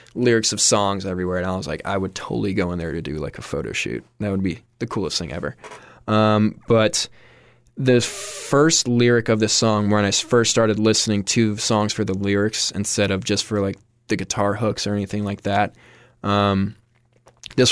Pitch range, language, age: 100-115 Hz, English, 20-39